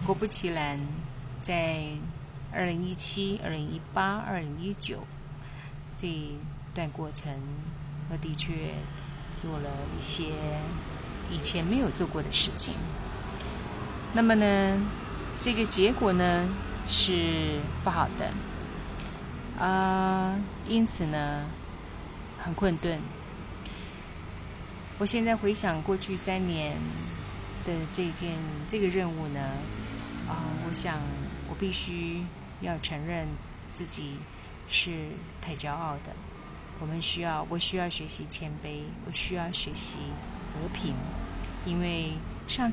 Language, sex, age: Chinese, female, 30-49